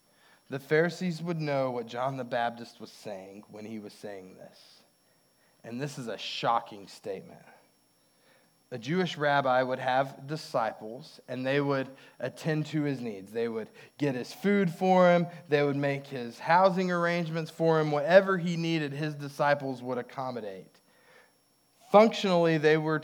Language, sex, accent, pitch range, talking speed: English, male, American, 125-170 Hz, 155 wpm